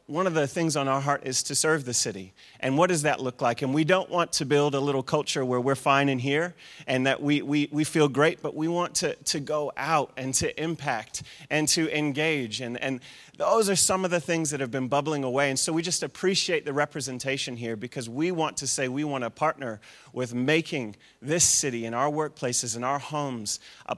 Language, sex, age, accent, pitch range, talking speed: English, male, 30-49, American, 130-155 Hz, 235 wpm